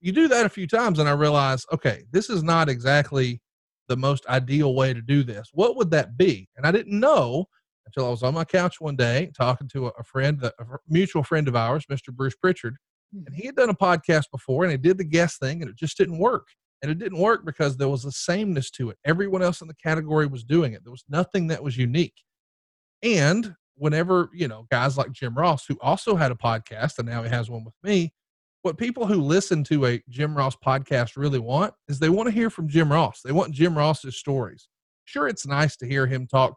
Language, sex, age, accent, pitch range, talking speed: English, male, 40-59, American, 130-175 Hz, 235 wpm